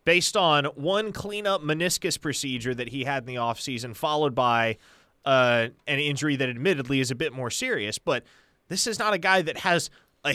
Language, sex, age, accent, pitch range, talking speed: English, male, 30-49, American, 115-175 Hz, 190 wpm